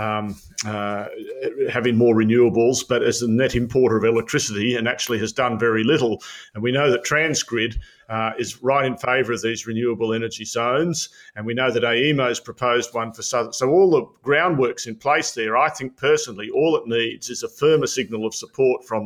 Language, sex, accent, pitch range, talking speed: English, male, Australian, 115-130 Hz, 200 wpm